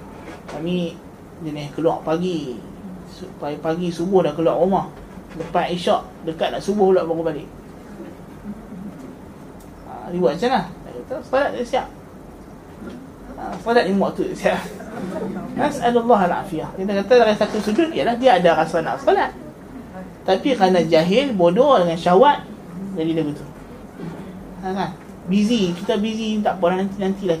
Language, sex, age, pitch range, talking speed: Malay, male, 20-39, 175-235 Hz, 140 wpm